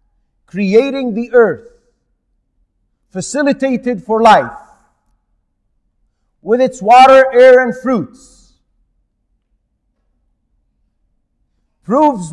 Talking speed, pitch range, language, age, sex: 65 wpm, 150-250 Hz, English, 40-59, male